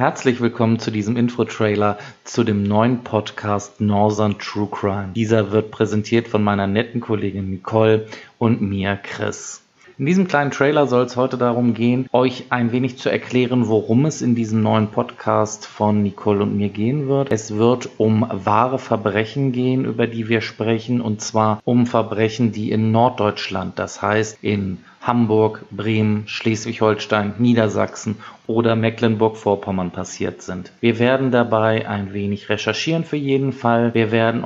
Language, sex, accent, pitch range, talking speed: German, male, German, 110-120 Hz, 155 wpm